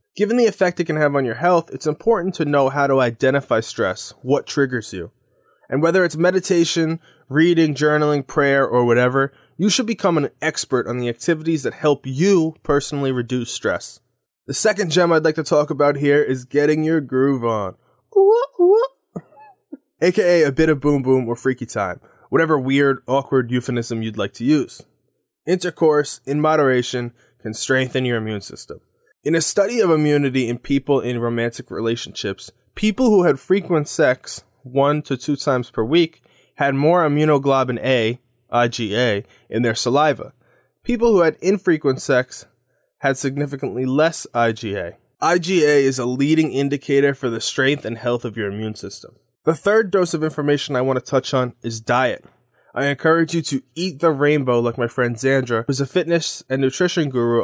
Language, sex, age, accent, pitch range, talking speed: English, male, 20-39, American, 125-165 Hz, 170 wpm